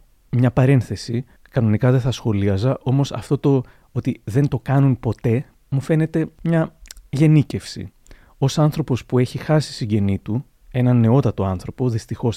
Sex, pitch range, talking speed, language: male, 110-135 Hz, 140 wpm, Greek